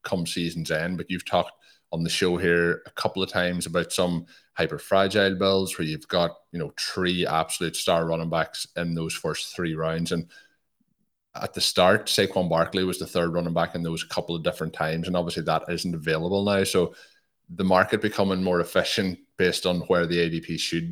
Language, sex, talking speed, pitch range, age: English, male, 200 wpm, 85-95 Hz, 30-49